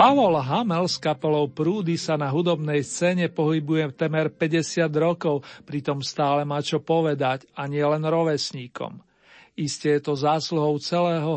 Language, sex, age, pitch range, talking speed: Slovak, male, 50-69, 145-165 Hz, 145 wpm